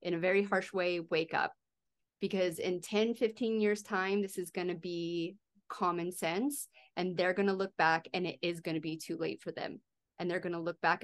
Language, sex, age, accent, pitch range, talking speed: English, female, 30-49, American, 165-195 Hz, 230 wpm